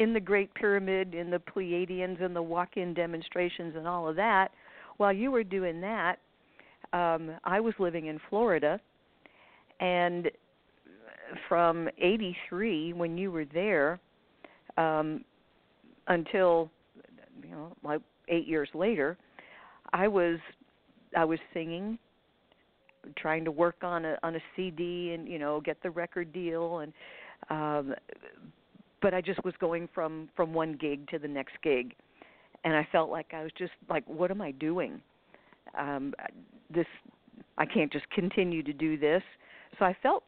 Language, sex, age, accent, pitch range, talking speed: English, female, 50-69, American, 160-185 Hz, 150 wpm